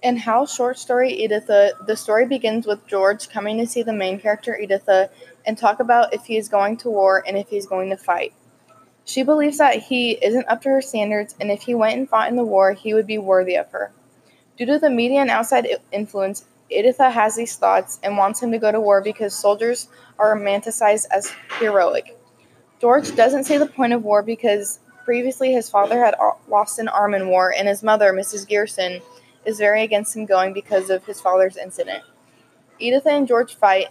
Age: 20-39